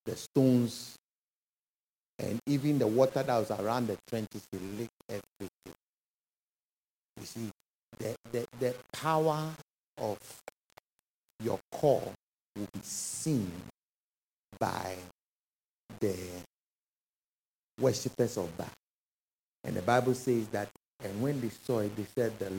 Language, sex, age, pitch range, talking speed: English, male, 60-79, 100-125 Hz, 115 wpm